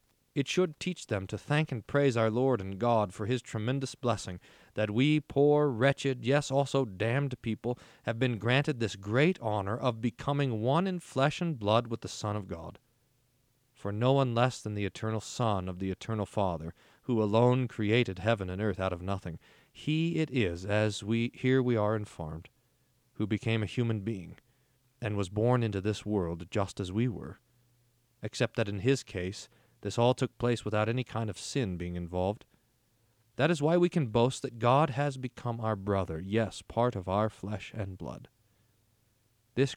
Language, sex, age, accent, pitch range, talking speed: English, male, 40-59, American, 100-130 Hz, 185 wpm